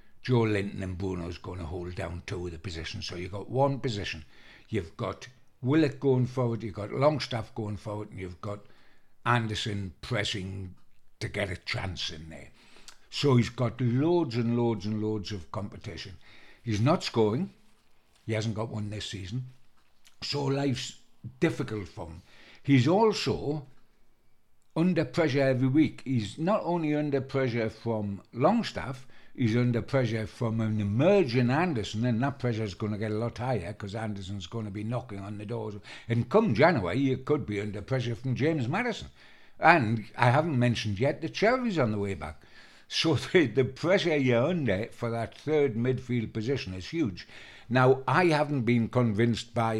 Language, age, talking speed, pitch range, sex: English, 60-79, 170 wpm, 105-135 Hz, male